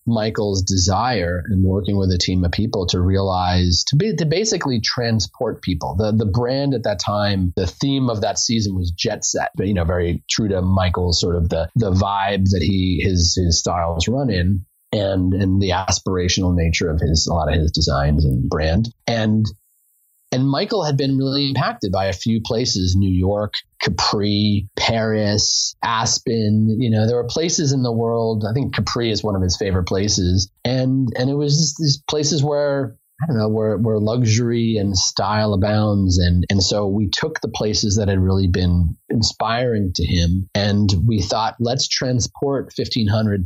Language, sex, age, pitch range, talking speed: English, male, 30-49, 95-115 Hz, 185 wpm